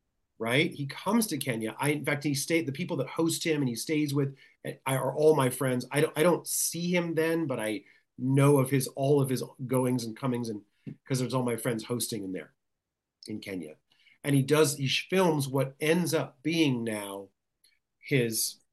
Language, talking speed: English, 200 wpm